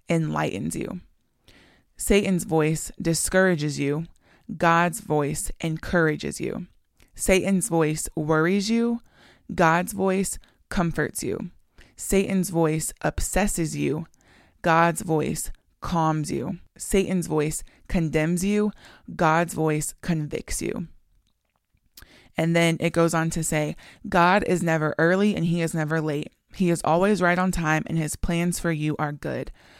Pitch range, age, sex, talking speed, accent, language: 155-185 Hz, 20-39, female, 125 wpm, American, English